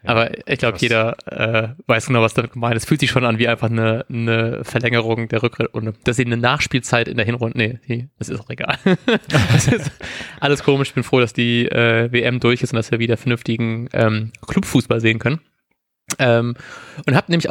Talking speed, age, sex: 205 wpm, 20-39, male